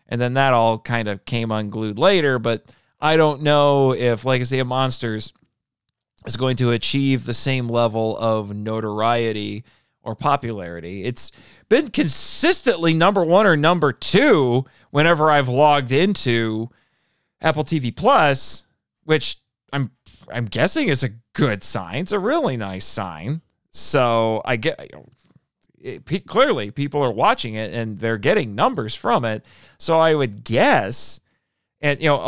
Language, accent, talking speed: English, American, 155 wpm